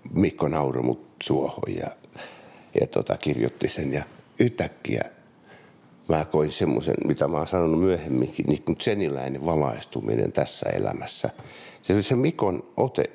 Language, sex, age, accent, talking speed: Finnish, male, 60-79, native, 125 wpm